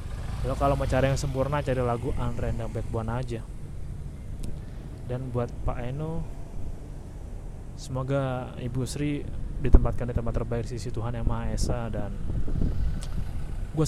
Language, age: Indonesian, 20-39